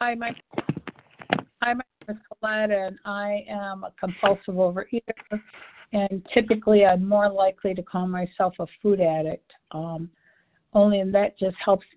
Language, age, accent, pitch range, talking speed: English, 50-69, American, 185-210 Hz, 140 wpm